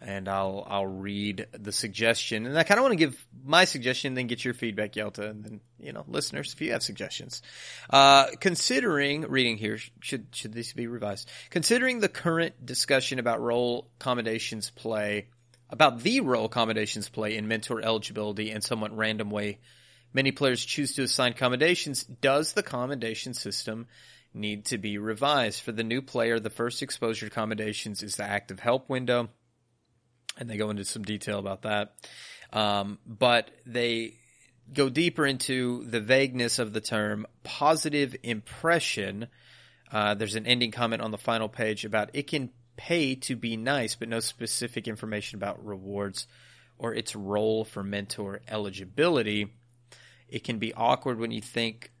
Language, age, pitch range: English, 30-49, 105-125 Hz